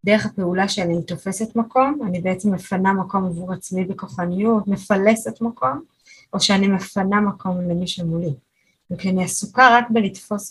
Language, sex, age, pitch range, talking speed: Hebrew, female, 20-39, 180-225 Hz, 145 wpm